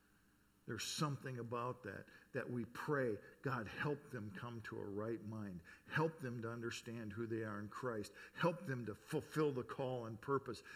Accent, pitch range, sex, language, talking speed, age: American, 125-195 Hz, male, English, 180 wpm, 50-69